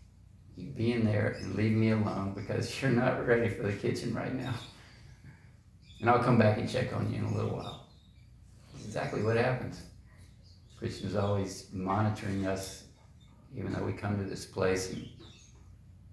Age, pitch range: 50-69, 90-110 Hz